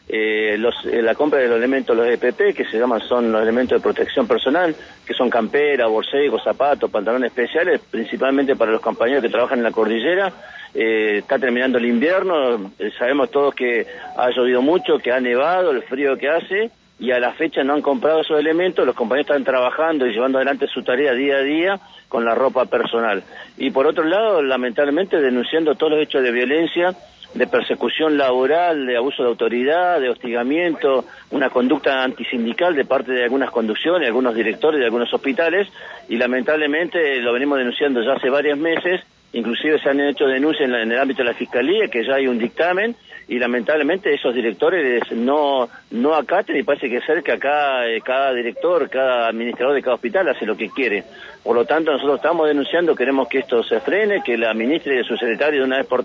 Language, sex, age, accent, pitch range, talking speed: Spanish, male, 50-69, Argentinian, 125-160 Hz, 200 wpm